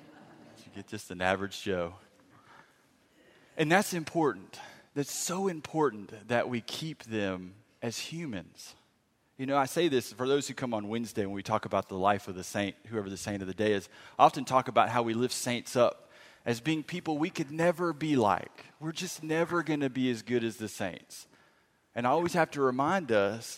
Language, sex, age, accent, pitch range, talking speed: English, male, 30-49, American, 110-150 Hz, 200 wpm